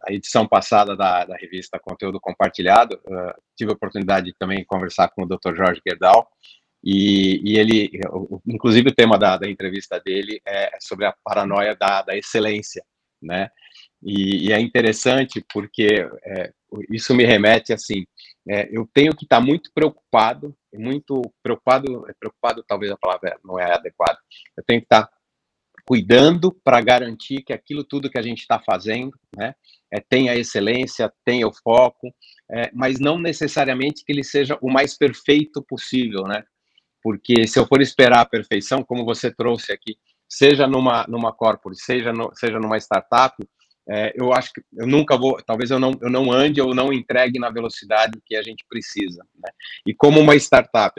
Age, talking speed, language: 40-59, 170 wpm, Portuguese